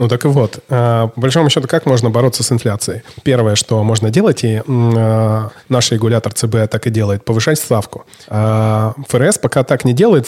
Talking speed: 195 wpm